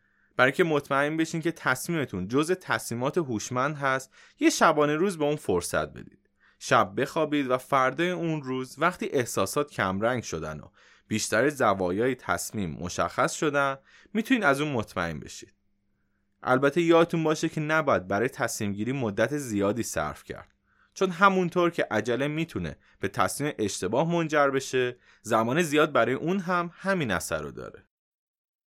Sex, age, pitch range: male, 20-39, 105-155 Hz